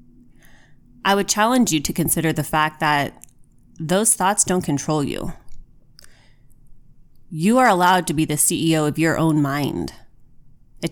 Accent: American